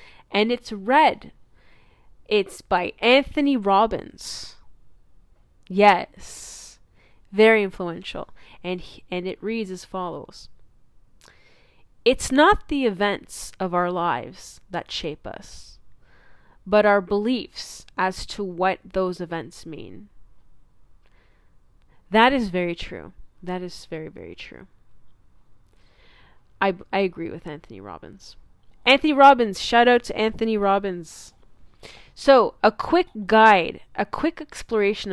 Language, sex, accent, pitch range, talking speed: English, female, American, 180-245 Hz, 110 wpm